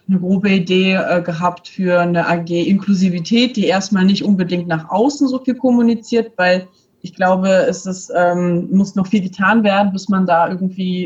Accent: German